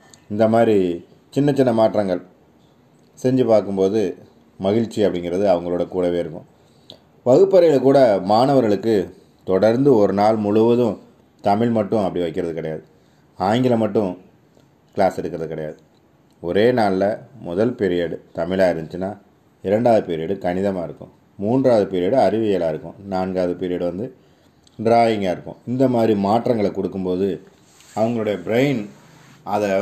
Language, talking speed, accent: Tamil, 110 wpm, native